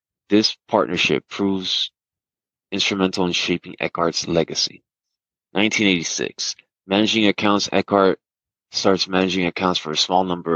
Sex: male